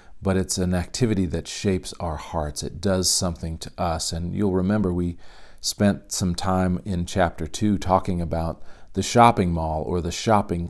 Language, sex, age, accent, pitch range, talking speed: English, male, 40-59, American, 85-110 Hz, 175 wpm